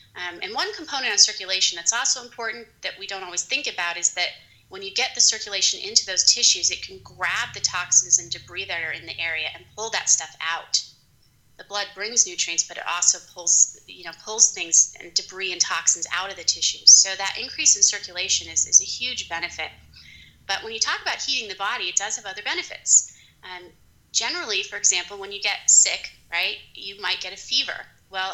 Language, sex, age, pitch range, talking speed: English, female, 30-49, 170-210 Hz, 210 wpm